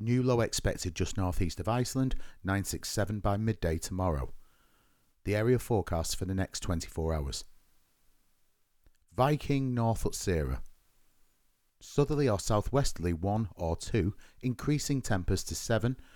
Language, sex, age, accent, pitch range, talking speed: English, male, 40-59, British, 90-120 Hz, 130 wpm